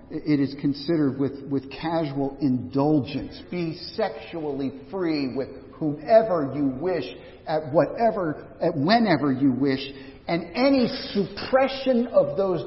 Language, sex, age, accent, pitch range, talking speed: English, male, 50-69, American, 135-190 Hz, 120 wpm